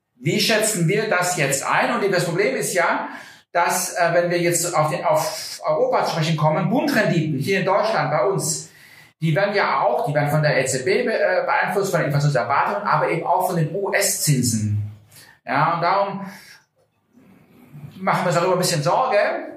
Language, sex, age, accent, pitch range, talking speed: German, male, 40-59, German, 150-195 Hz, 180 wpm